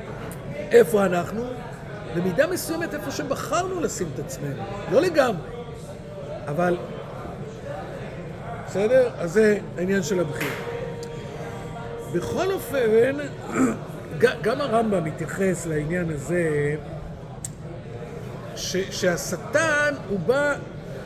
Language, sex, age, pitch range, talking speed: Hebrew, male, 50-69, 155-240 Hz, 85 wpm